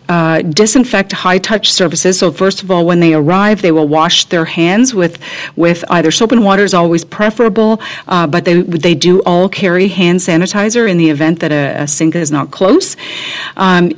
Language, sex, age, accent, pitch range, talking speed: English, female, 40-59, American, 160-195 Hz, 195 wpm